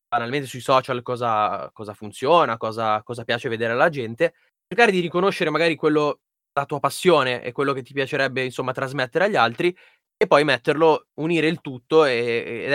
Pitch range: 125-155 Hz